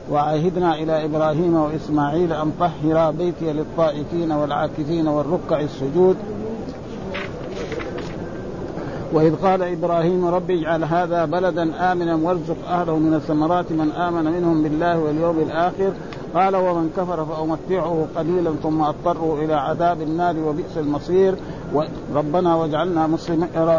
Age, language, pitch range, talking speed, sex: 50-69, Arabic, 155-175 Hz, 110 wpm, male